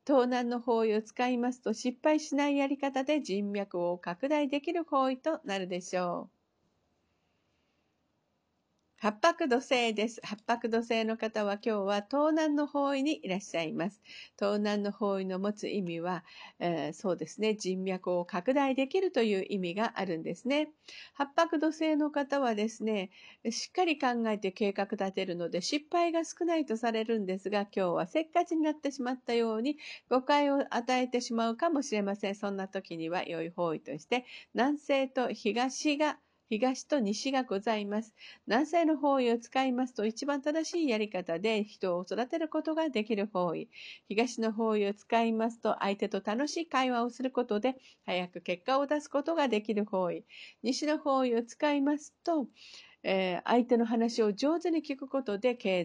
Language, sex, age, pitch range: Japanese, female, 50-69, 200-285 Hz